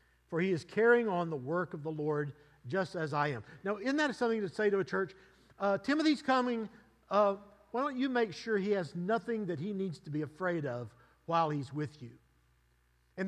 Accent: American